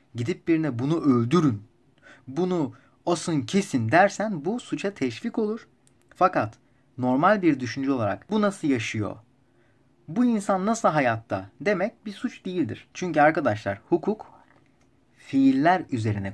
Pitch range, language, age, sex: 115-150 Hz, Turkish, 30-49, male